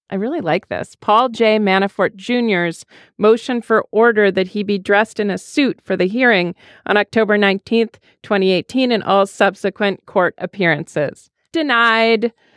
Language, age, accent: English, 40-59, American